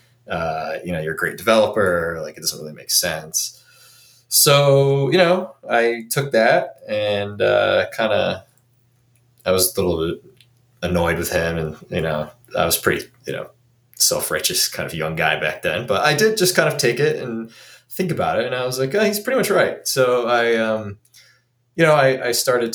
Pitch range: 100-135 Hz